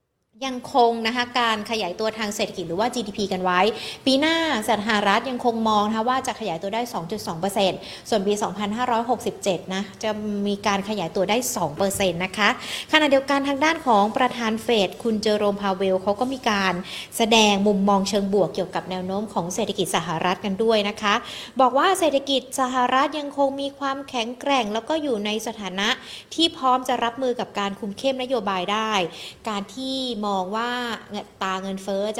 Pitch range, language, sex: 200-250 Hz, Thai, female